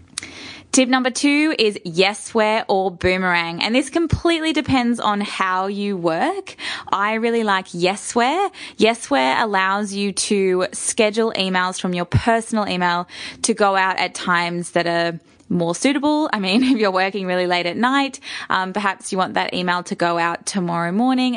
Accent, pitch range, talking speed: Australian, 180-225 Hz, 165 wpm